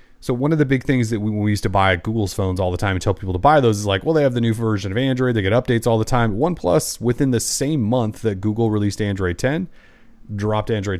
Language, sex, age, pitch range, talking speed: English, male, 30-49, 90-120 Hz, 280 wpm